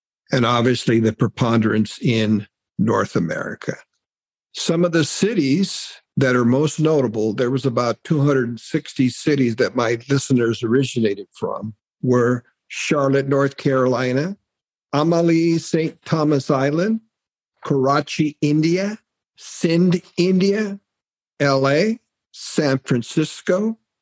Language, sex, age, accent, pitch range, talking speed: English, male, 50-69, American, 125-165 Hz, 100 wpm